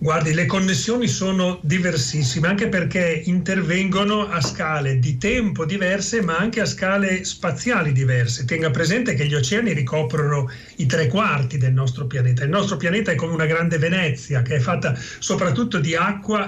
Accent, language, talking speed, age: native, Italian, 165 wpm, 40-59